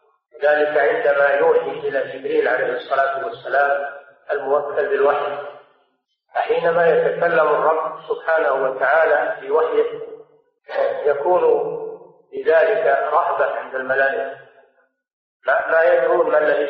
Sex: male